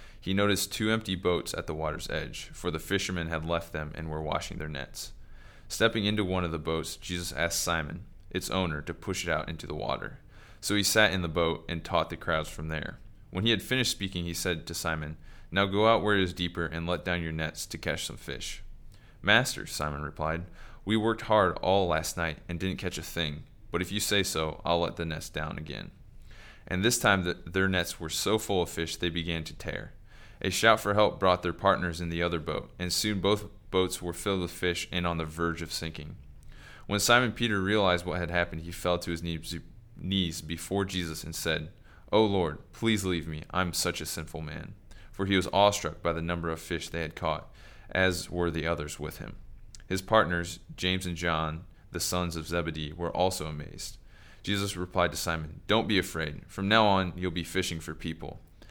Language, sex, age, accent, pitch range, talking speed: English, male, 20-39, American, 80-95 Hz, 215 wpm